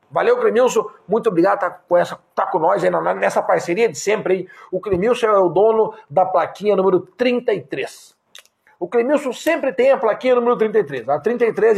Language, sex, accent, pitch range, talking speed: Portuguese, male, Brazilian, 195-275 Hz, 160 wpm